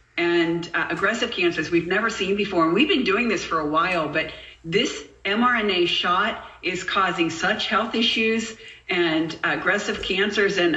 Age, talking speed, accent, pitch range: 50-69, 160 wpm, American, 170-225 Hz